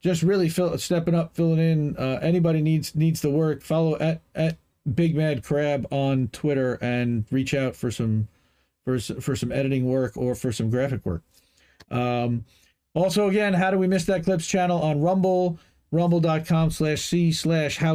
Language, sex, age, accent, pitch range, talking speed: English, male, 40-59, American, 130-170 Hz, 165 wpm